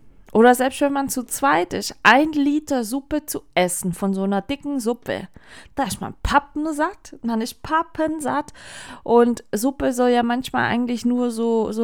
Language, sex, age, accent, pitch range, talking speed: German, female, 30-49, German, 185-240 Hz, 170 wpm